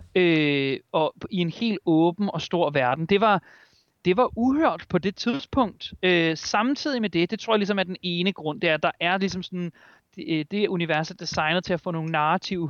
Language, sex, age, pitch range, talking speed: Danish, male, 30-49, 165-200 Hz, 215 wpm